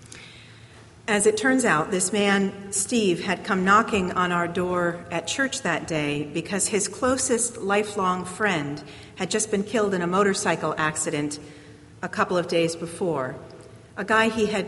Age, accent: 50-69, American